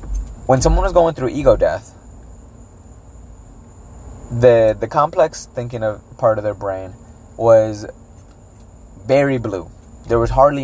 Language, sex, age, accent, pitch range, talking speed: English, male, 20-39, American, 100-125 Hz, 125 wpm